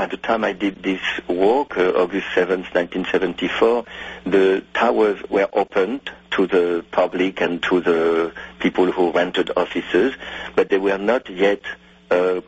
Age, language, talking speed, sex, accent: 50-69, English, 150 wpm, male, French